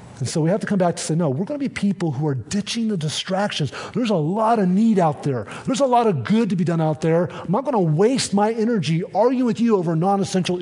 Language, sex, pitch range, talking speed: English, male, 155-215 Hz, 275 wpm